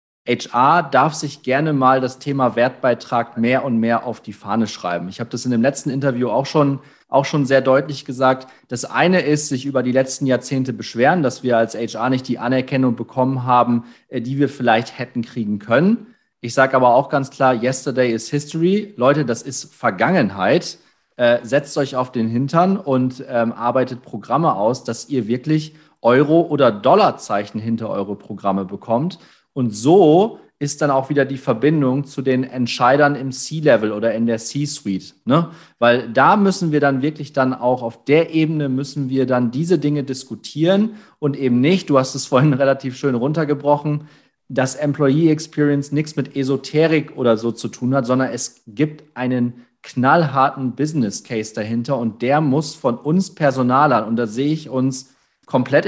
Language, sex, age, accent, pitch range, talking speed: German, male, 40-59, German, 120-145 Hz, 175 wpm